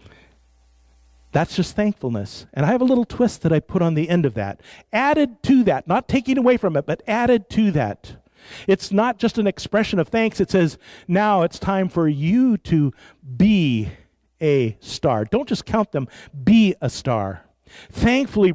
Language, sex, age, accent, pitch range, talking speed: English, male, 50-69, American, 135-195 Hz, 180 wpm